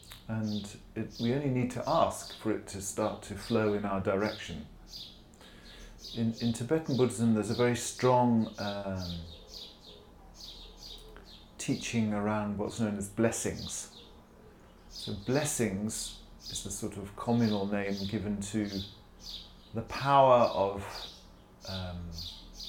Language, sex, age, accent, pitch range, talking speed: English, male, 40-59, British, 90-115 Hz, 120 wpm